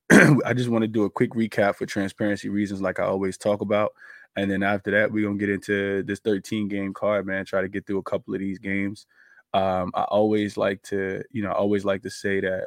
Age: 20-39